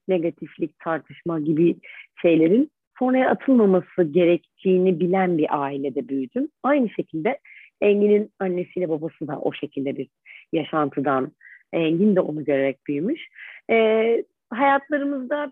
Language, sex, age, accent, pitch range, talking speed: Turkish, female, 40-59, native, 175-245 Hz, 110 wpm